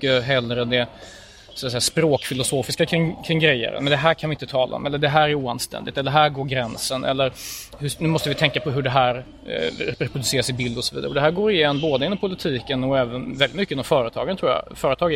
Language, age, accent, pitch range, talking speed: English, 30-49, Swedish, 125-155 Hz, 245 wpm